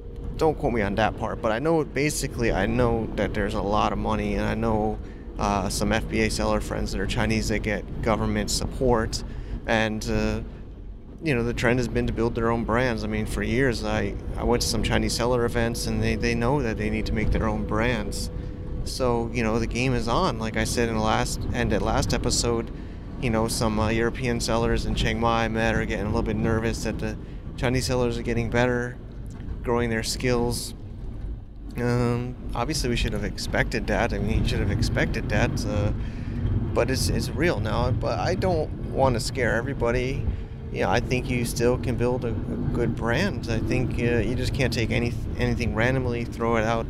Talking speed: 210 wpm